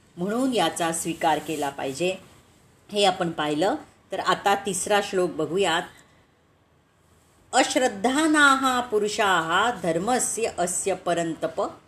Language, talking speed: Marathi, 90 wpm